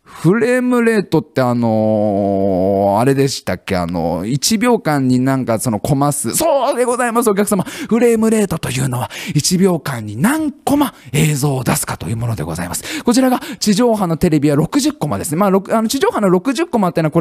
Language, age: Japanese, 20-39